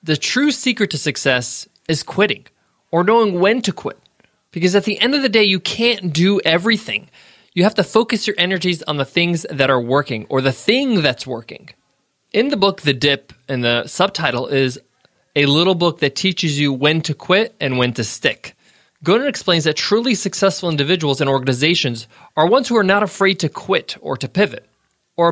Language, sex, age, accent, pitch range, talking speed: English, male, 20-39, American, 145-200 Hz, 195 wpm